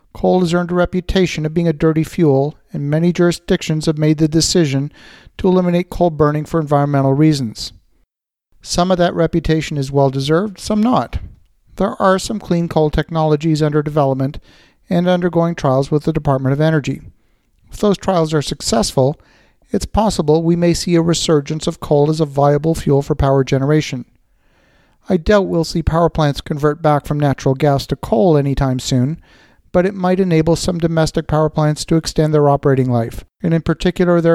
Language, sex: English, male